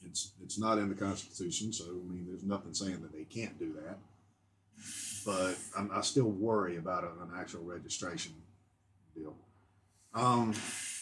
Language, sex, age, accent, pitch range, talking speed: English, male, 50-69, American, 95-125 Hz, 150 wpm